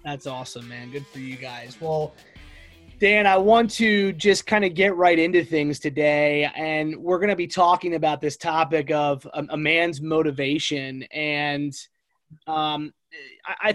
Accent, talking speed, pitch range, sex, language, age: American, 155 wpm, 150-175 Hz, male, English, 20-39